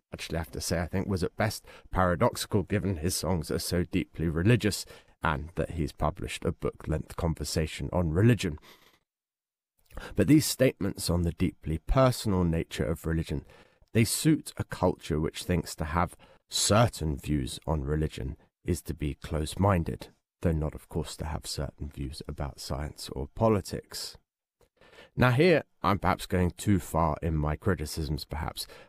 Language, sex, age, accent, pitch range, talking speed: English, male, 30-49, British, 75-100 Hz, 160 wpm